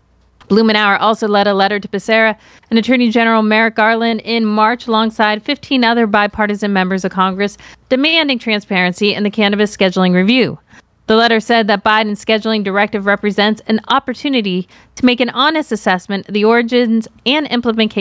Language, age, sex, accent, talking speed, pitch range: English, 40-59, female, American, 155 wpm, 195-240 Hz